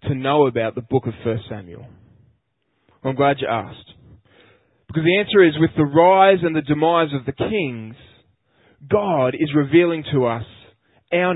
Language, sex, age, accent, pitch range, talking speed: English, male, 20-39, Australian, 115-160 Hz, 165 wpm